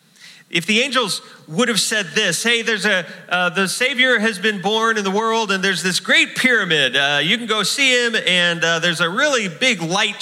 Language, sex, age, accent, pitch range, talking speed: English, male, 30-49, American, 165-210 Hz, 215 wpm